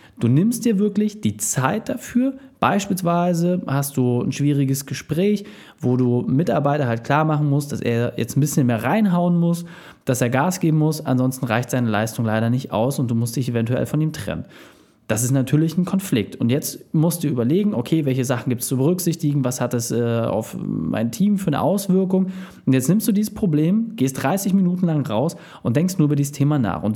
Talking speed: 205 wpm